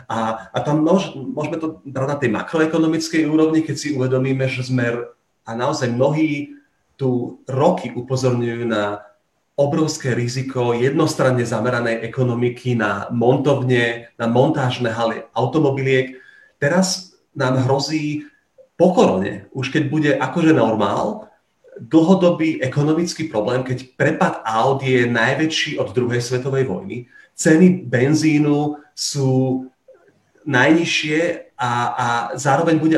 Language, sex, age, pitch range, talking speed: Slovak, male, 30-49, 115-150 Hz, 115 wpm